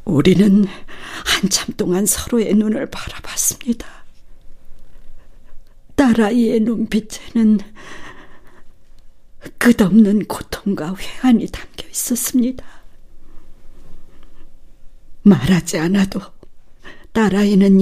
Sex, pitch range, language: female, 190-320 Hz, Korean